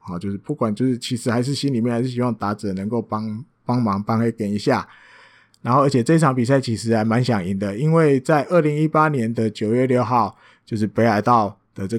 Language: Chinese